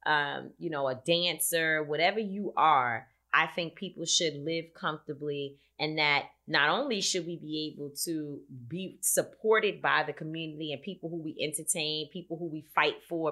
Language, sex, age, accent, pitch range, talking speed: English, female, 30-49, American, 145-175 Hz, 170 wpm